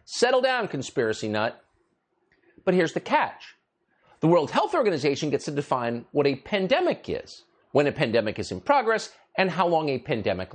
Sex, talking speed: male, 170 wpm